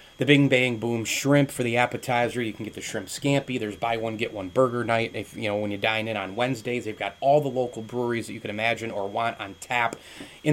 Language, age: English, 30-49